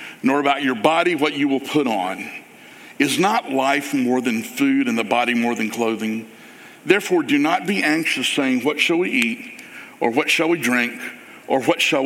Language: English